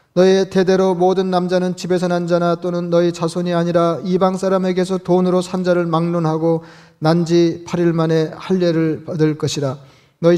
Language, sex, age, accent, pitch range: Korean, male, 40-59, native, 150-175 Hz